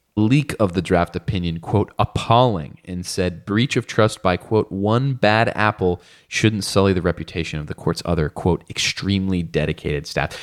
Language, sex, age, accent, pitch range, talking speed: English, male, 20-39, American, 85-115 Hz, 165 wpm